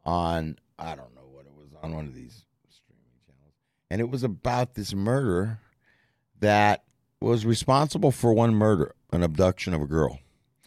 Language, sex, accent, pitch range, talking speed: English, male, American, 95-130 Hz, 170 wpm